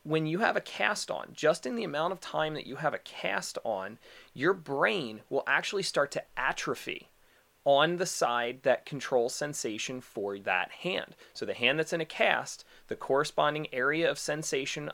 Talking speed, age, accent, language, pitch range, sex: 185 wpm, 30-49, American, English, 115-155 Hz, male